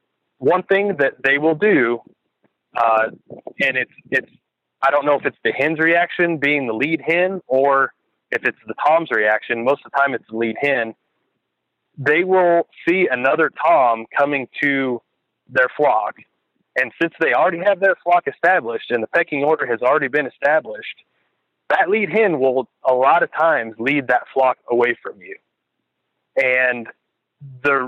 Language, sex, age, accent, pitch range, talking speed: English, male, 30-49, American, 125-170 Hz, 165 wpm